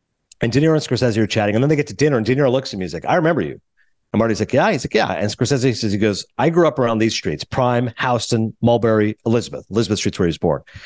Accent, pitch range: American, 115-150 Hz